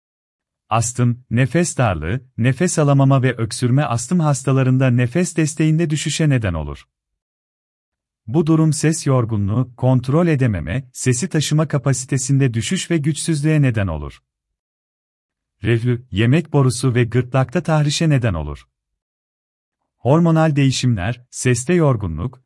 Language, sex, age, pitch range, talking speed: Turkish, male, 40-59, 95-150 Hz, 105 wpm